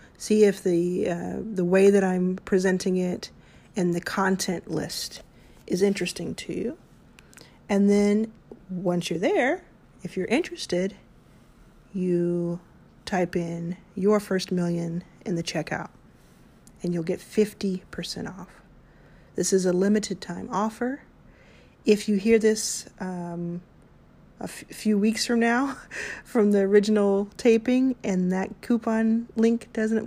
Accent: American